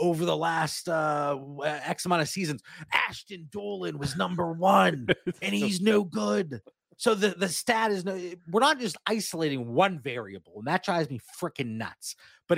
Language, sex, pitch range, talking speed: English, male, 145-180 Hz, 170 wpm